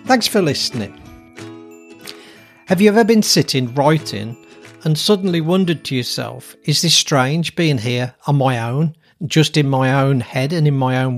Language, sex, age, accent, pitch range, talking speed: English, male, 40-59, British, 125-165 Hz, 165 wpm